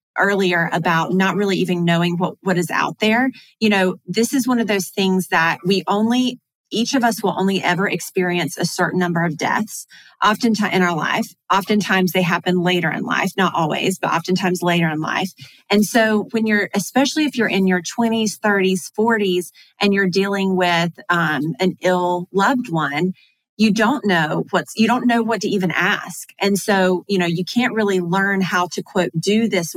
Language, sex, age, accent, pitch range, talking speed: English, female, 30-49, American, 175-200 Hz, 190 wpm